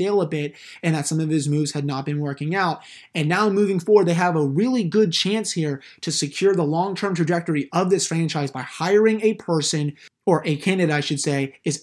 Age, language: 30-49, English